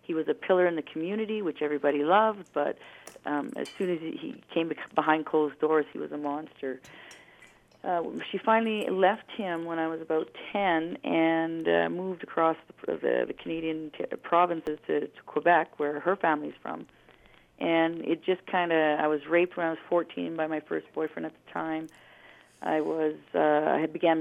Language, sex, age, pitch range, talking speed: English, female, 40-59, 150-175 Hz, 180 wpm